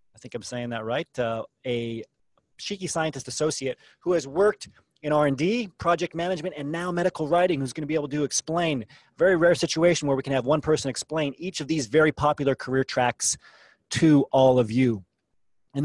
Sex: male